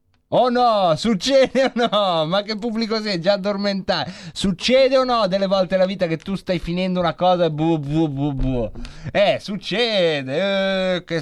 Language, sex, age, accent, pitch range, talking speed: Italian, male, 30-49, native, 165-220 Hz, 170 wpm